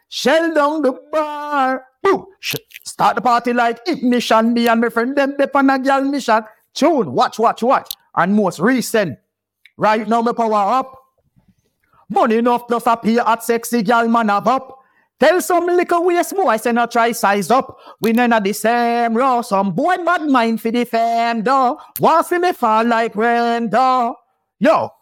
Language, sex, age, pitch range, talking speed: English, male, 50-69, 225-245 Hz, 175 wpm